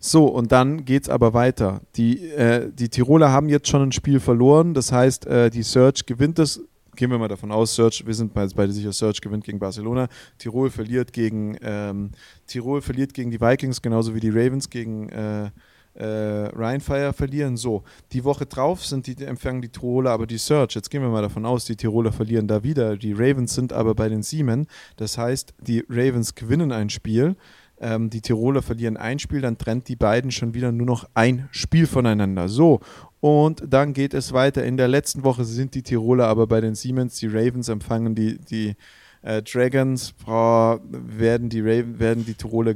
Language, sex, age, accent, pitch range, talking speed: German, male, 30-49, German, 110-130 Hz, 190 wpm